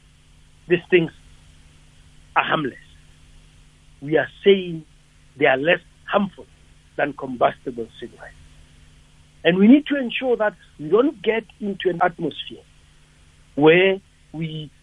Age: 60-79